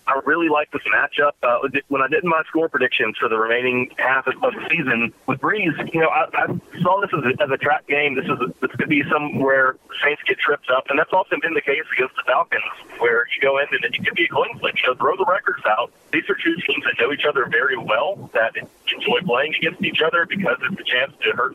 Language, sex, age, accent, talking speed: English, male, 40-59, American, 255 wpm